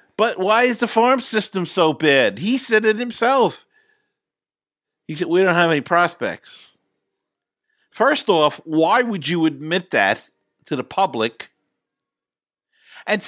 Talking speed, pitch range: 135 wpm, 160-230 Hz